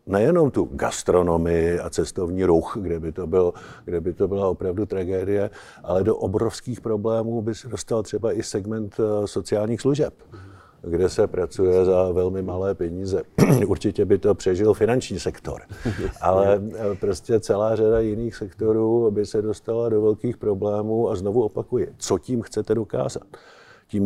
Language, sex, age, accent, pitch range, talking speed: Czech, male, 50-69, native, 100-120 Hz, 145 wpm